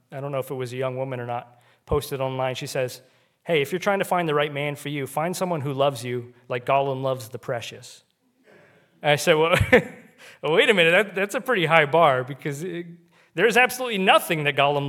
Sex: male